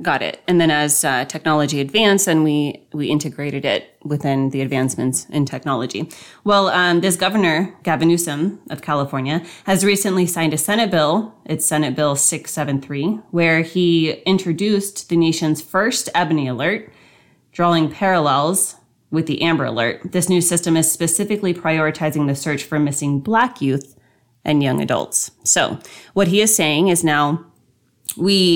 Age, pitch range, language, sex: 20-39, 145-175 Hz, English, female